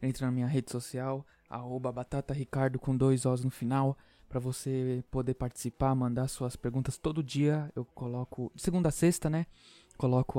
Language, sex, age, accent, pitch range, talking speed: Portuguese, male, 20-39, Brazilian, 130-150 Hz, 170 wpm